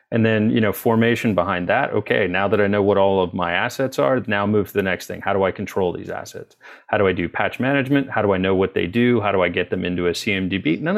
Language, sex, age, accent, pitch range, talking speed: English, male, 30-49, American, 95-115 Hz, 285 wpm